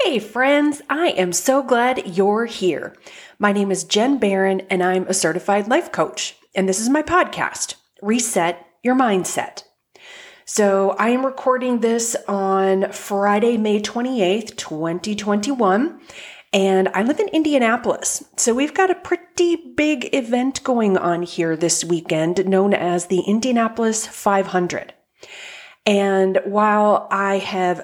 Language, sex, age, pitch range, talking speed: English, female, 30-49, 185-245 Hz, 135 wpm